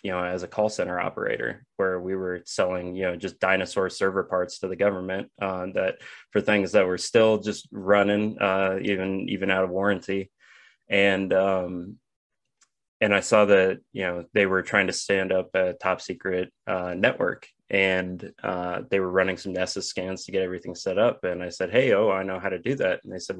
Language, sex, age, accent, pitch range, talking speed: English, male, 20-39, American, 90-100 Hz, 210 wpm